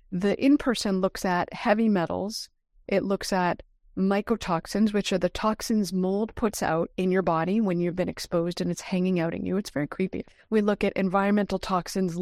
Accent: American